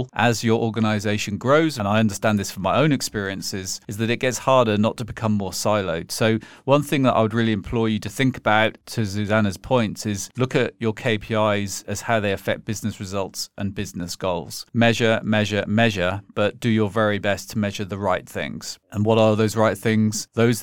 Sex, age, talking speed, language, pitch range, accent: male, 40-59, 205 wpm, English, 100-115 Hz, British